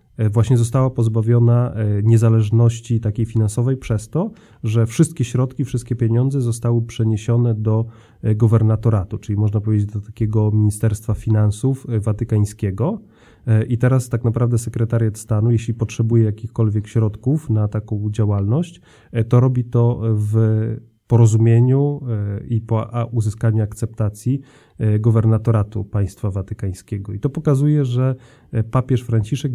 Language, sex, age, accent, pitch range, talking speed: Polish, male, 30-49, native, 110-125 Hz, 115 wpm